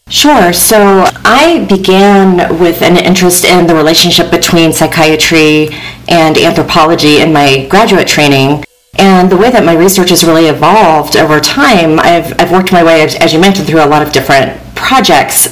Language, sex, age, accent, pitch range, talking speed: English, female, 40-59, American, 150-180 Hz, 165 wpm